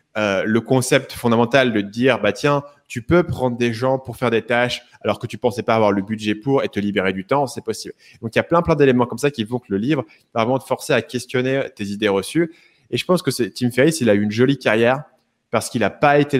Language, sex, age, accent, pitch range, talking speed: French, male, 20-39, French, 105-125 Hz, 280 wpm